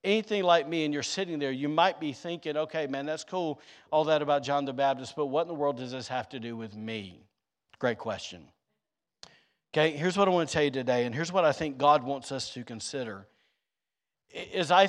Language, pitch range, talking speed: English, 135-155 Hz, 225 wpm